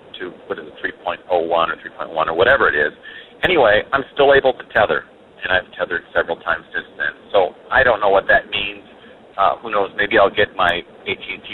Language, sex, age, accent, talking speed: English, male, 40-59, American, 205 wpm